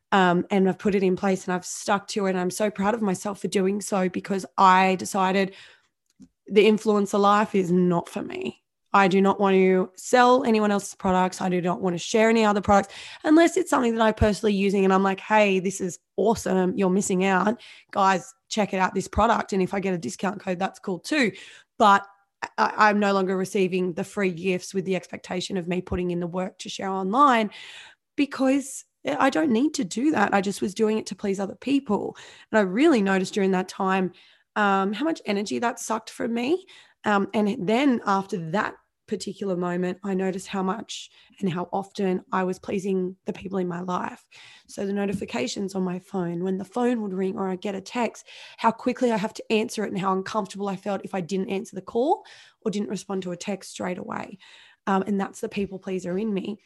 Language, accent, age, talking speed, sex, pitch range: English, Australian, 20-39, 220 wpm, female, 190-220 Hz